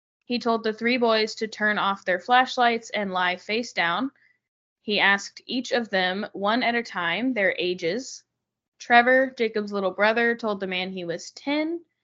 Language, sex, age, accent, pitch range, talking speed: English, female, 20-39, American, 190-240 Hz, 175 wpm